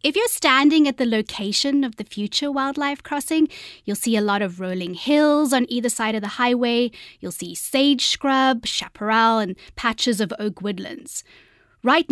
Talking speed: 175 wpm